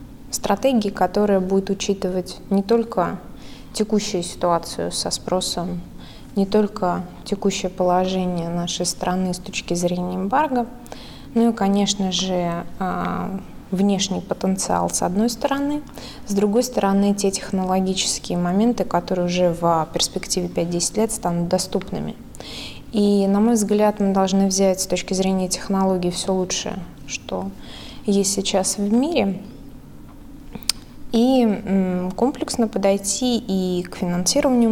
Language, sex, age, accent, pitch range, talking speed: Russian, female, 20-39, native, 185-215 Hz, 115 wpm